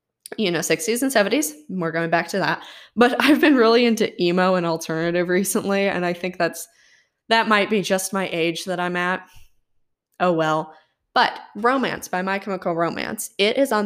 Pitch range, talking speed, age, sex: 170-220 Hz, 190 wpm, 10-29, female